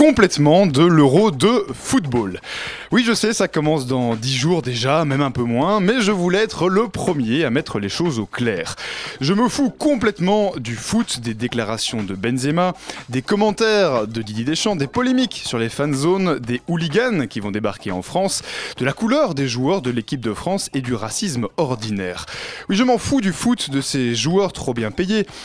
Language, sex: French, male